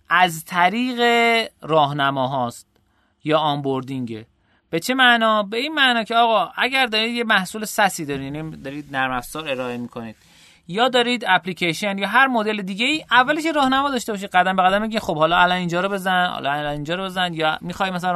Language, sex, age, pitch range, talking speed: Persian, male, 30-49, 145-215 Hz, 180 wpm